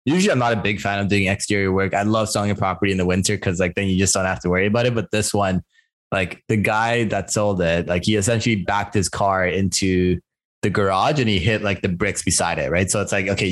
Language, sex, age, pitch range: English, male, 20-39, 90-110 Hz